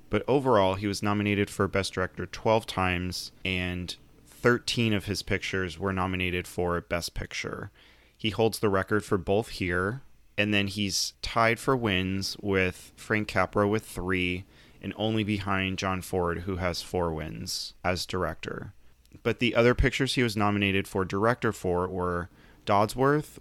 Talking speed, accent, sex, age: 155 wpm, American, male, 30-49